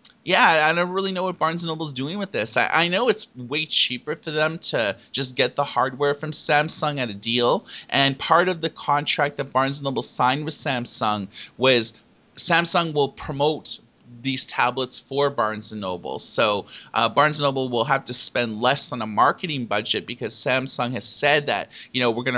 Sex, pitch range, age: male, 120-155 Hz, 30-49